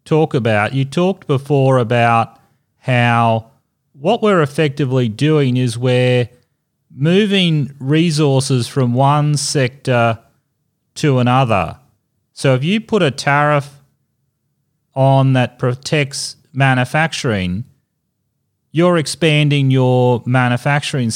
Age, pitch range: 30-49, 125-155 Hz